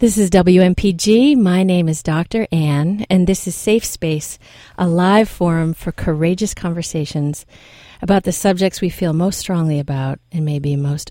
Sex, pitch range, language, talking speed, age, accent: female, 155-195 Hz, English, 165 wpm, 40-59, American